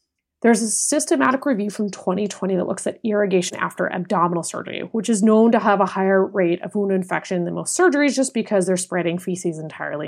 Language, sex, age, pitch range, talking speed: English, female, 30-49, 185-235 Hz, 195 wpm